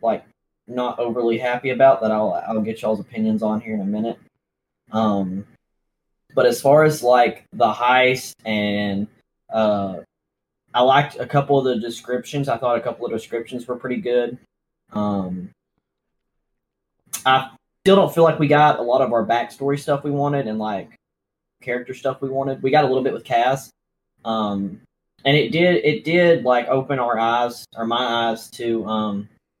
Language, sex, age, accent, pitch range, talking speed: English, male, 10-29, American, 110-130 Hz, 175 wpm